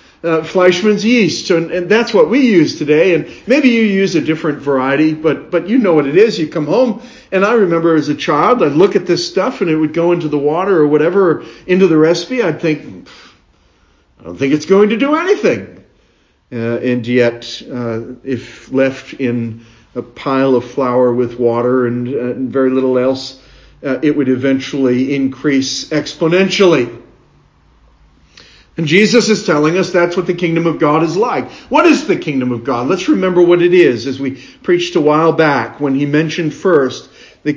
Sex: male